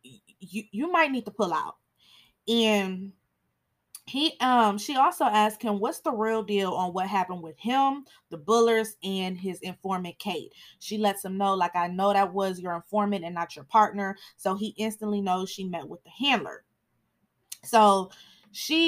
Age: 20-39